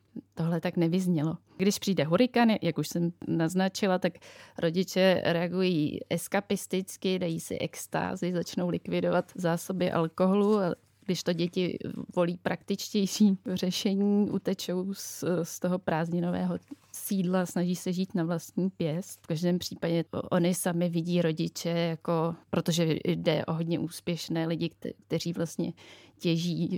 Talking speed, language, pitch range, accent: 125 wpm, Czech, 170-195 Hz, native